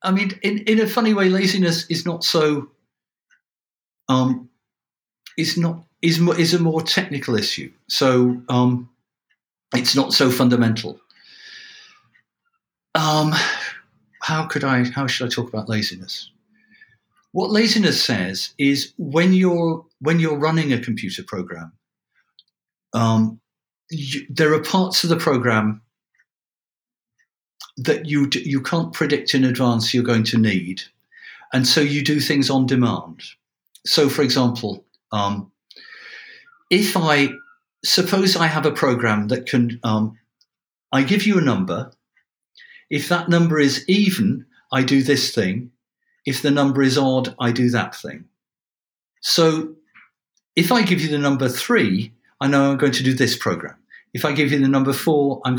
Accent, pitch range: British, 125-175 Hz